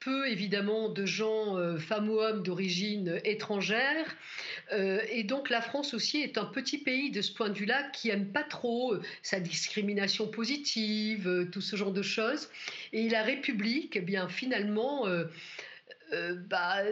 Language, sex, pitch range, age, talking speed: French, female, 200-255 Hz, 50-69, 165 wpm